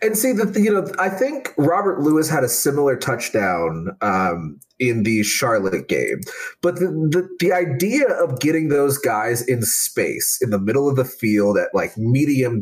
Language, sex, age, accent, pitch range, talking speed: English, male, 30-49, American, 135-210 Hz, 180 wpm